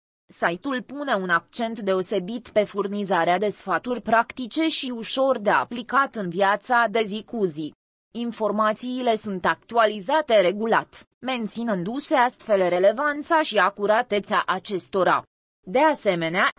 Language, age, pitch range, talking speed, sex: English, 20-39, 190-250 Hz, 115 wpm, female